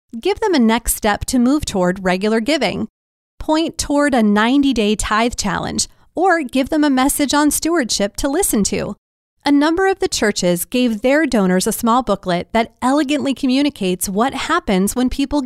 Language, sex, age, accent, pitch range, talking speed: English, female, 30-49, American, 210-295 Hz, 170 wpm